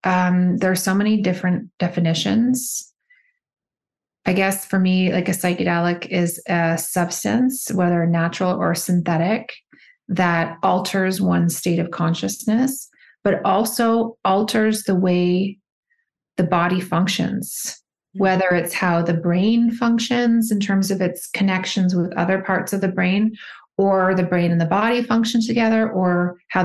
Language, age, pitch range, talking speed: English, 30-49, 170-200 Hz, 140 wpm